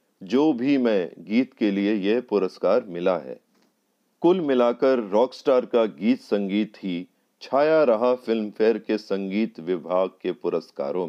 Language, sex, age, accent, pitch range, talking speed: Hindi, male, 40-59, native, 105-150 Hz, 140 wpm